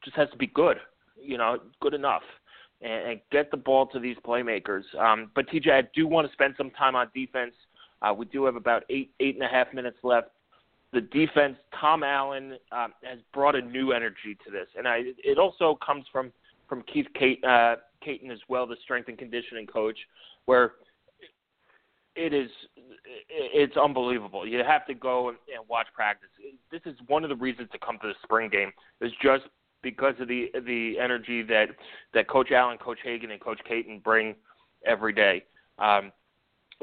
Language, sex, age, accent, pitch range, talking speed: English, male, 30-49, American, 120-140 Hz, 185 wpm